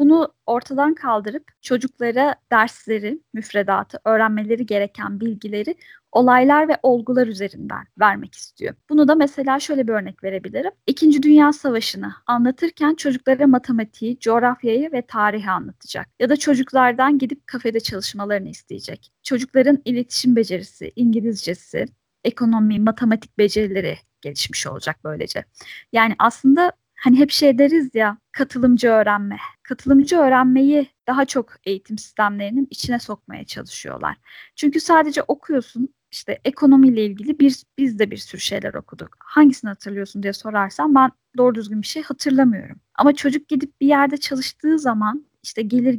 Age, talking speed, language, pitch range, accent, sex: 10-29, 130 wpm, Turkish, 215-275 Hz, native, female